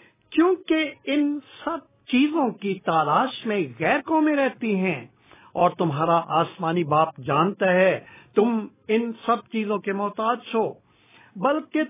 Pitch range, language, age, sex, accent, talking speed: 140-220 Hz, English, 50-69, male, Indian, 125 wpm